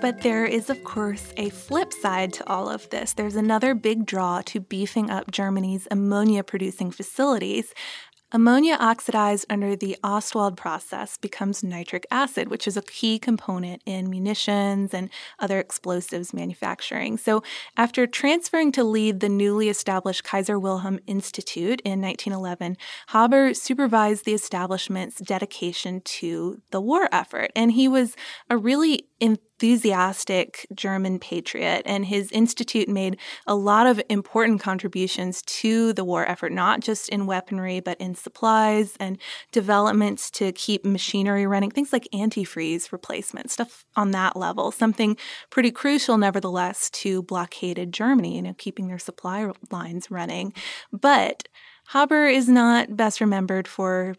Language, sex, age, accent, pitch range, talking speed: English, female, 20-39, American, 190-230 Hz, 140 wpm